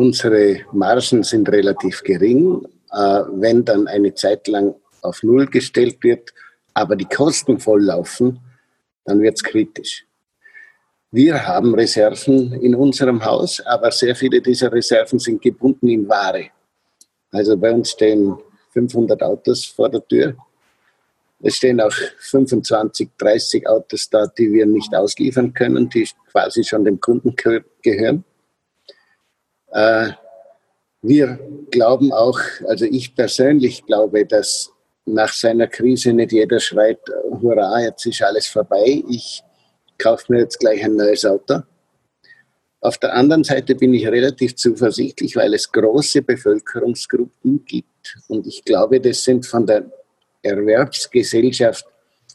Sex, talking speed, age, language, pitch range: male, 130 wpm, 50-69, German, 110-135 Hz